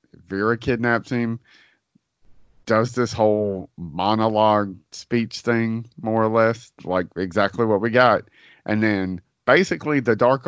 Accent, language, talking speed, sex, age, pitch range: American, English, 125 wpm, male, 40-59, 105-130 Hz